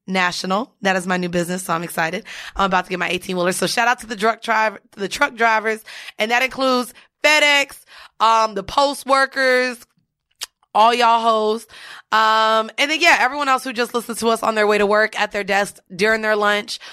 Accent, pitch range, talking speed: American, 200-240 Hz, 215 wpm